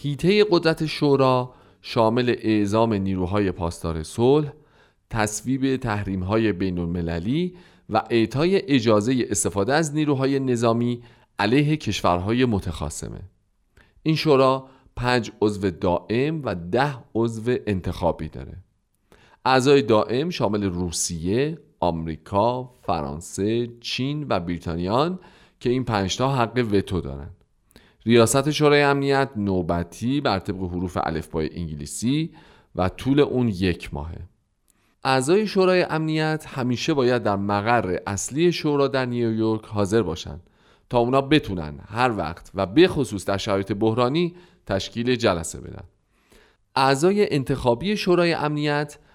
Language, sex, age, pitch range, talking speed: Persian, male, 40-59, 95-140 Hz, 110 wpm